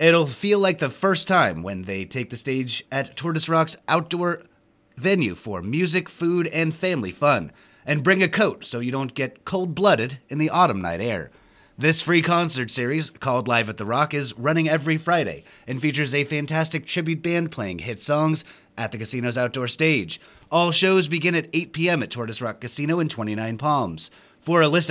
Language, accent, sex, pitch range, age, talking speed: English, American, male, 115-170 Hz, 30-49, 190 wpm